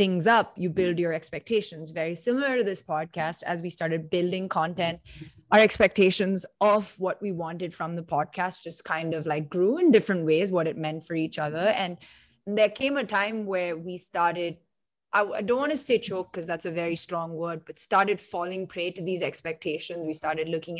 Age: 20-39